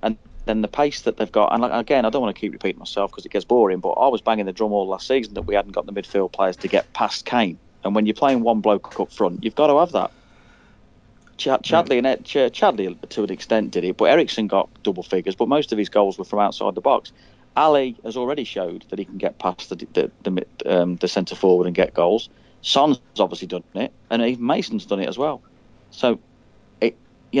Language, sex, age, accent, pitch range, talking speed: English, male, 30-49, British, 100-125 Hz, 230 wpm